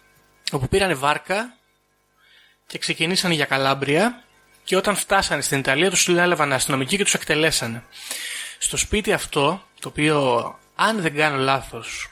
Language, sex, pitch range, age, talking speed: Greek, male, 130-160 Hz, 20-39, 135 wpm